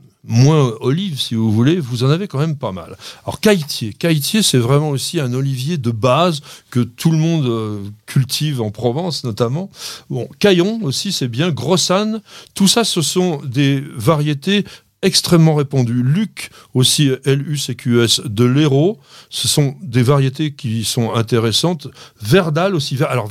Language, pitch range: French, 120-165 Hz